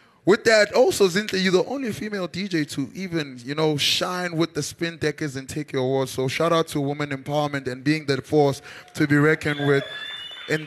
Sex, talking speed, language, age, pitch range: male, 210 wpm, English, 20-39, 145-190 Hz